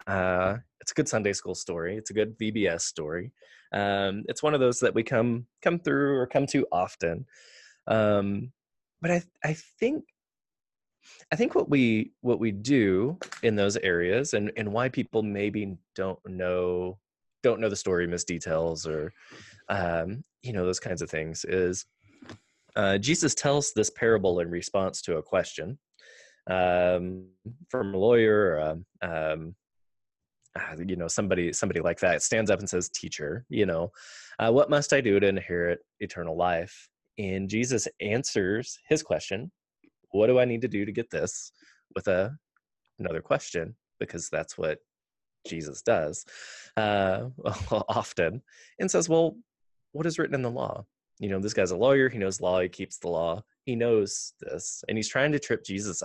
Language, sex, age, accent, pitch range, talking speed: English, male, 20-39, American, 90-125 Hz, 170 wpm